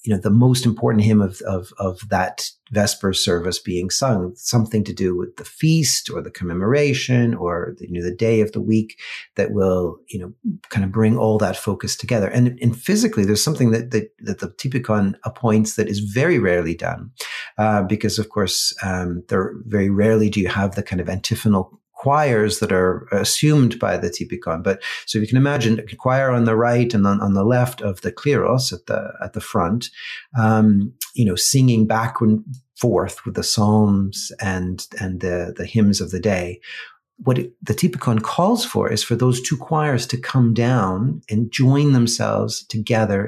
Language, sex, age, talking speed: English, male, 40-59, 195 wpm